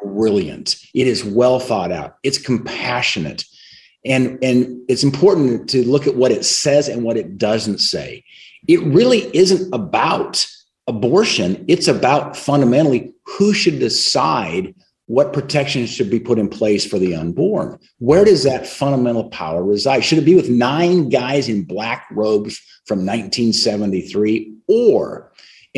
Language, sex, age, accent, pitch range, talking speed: English, male, 50-69, American, 110-155 Hz, 140 wpm